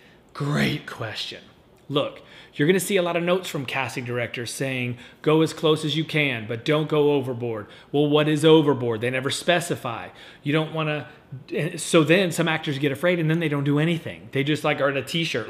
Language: English